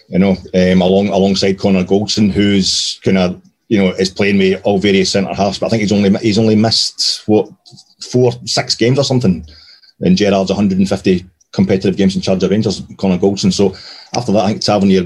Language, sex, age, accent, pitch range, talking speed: English, male, 40-59, British, 95-110 Hz, 200 wpm